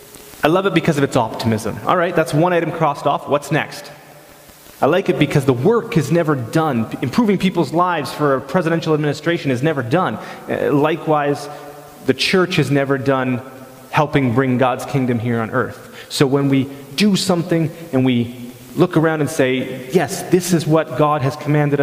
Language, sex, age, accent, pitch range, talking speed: English, male, 30-49, American, 130-175 Hz, 180 wpm